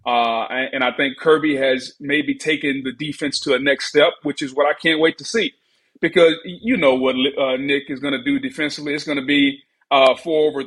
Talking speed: 220 wpm